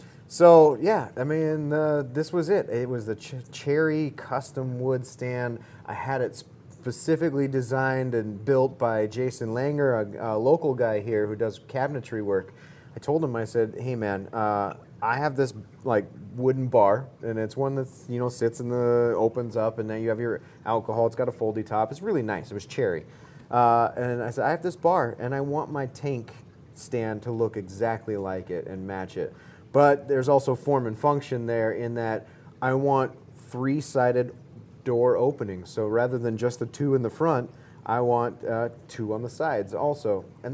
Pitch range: 115-145 Hz